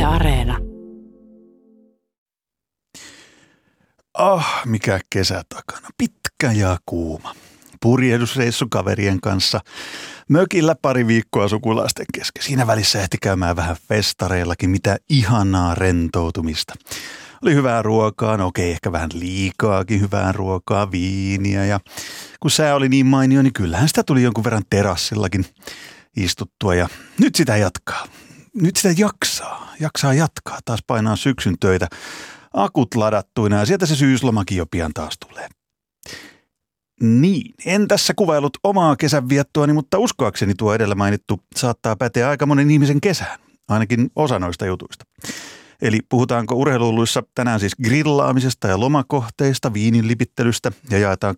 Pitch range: 100-140 Hz